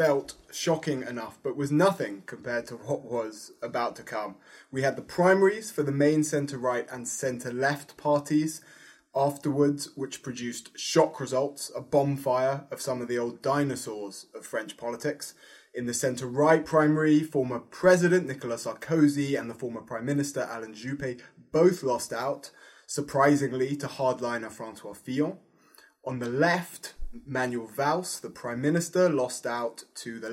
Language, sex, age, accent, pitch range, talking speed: English, male, 20-39, British, 120-160 Hz, 150 wpm